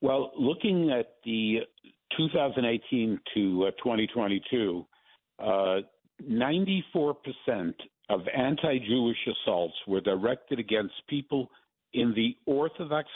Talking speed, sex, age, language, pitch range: 85 wpm, male, 60-79, English, 115-165 Hz